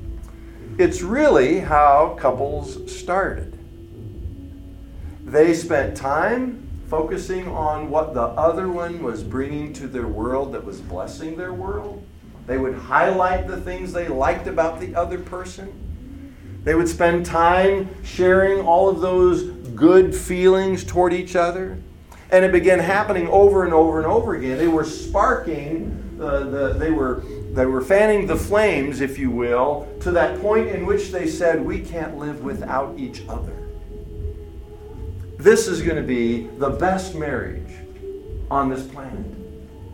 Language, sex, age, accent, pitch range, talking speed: English, male, 50-69, American, 110-185 Hz, 145 wpm